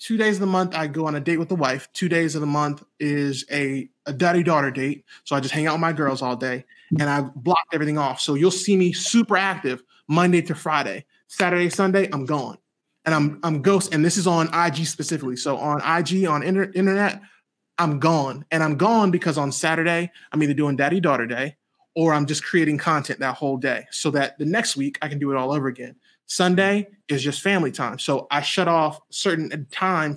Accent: American